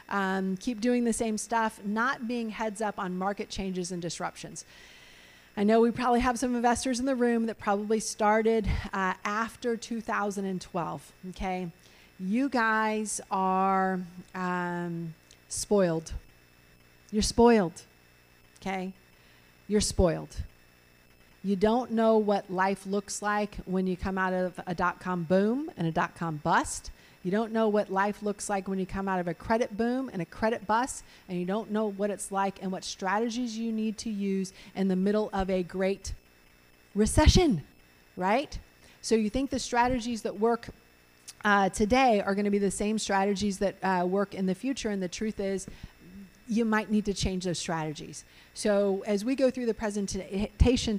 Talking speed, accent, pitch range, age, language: 165 wpm, American, 180-220 Hz, 40-59, English